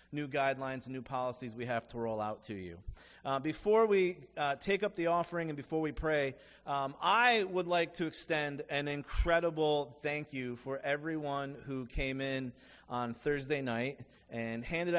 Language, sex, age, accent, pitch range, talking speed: English, male, 30-49, American, 135-175 Hz, 175 wpm